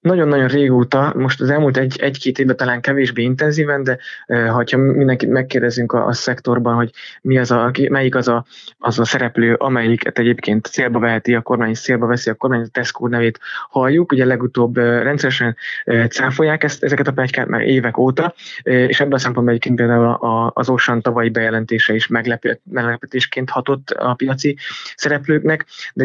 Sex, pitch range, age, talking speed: male, 115-130 Hz, 20-39, 160 wpm